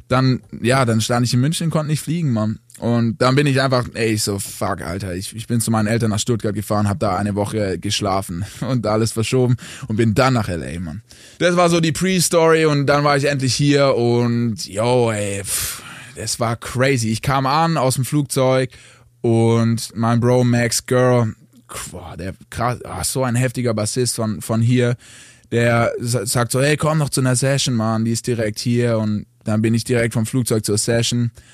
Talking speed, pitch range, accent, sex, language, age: 200 wpm, 110-130 Hz, German, male, German, 20-39